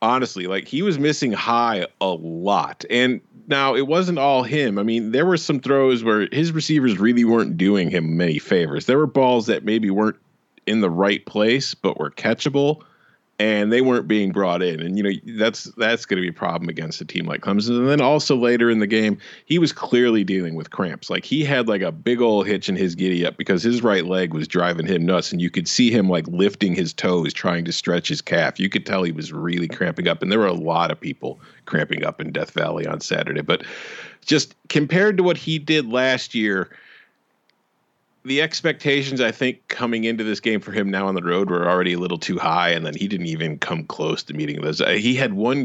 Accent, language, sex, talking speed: American, English, male, 230 wpm